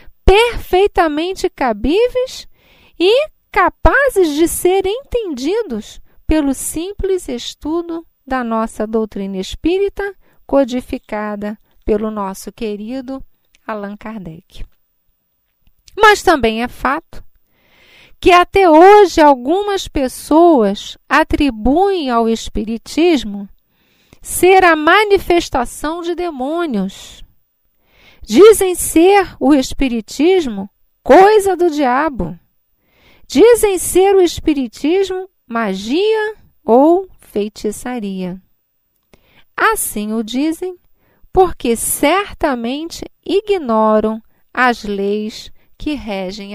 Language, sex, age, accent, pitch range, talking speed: Portuguese, female, 40-59, Brazilian, 220-360 Hz, 80 wpm